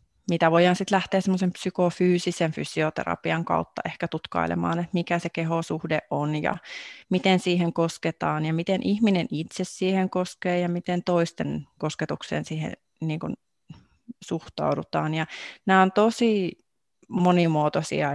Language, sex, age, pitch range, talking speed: Finnish, female, 30-49, 155-185 Hz, 115 wpm